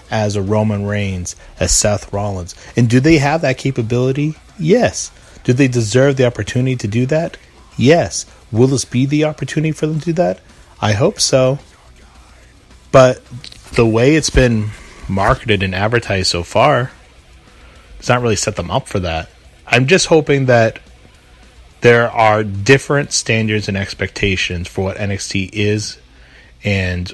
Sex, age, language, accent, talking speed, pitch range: male, 30-49, English, American, 155 wpm, 90-115 Hz